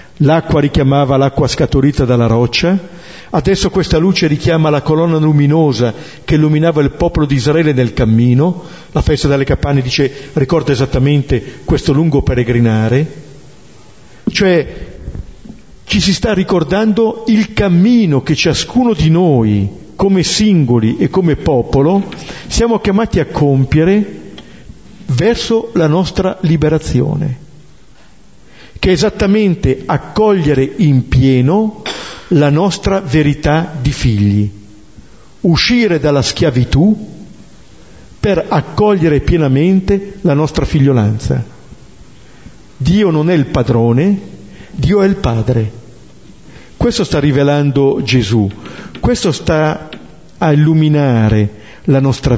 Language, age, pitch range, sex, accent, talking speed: Italian, 50-69, 130-175 Hz, male, native, 110 wpm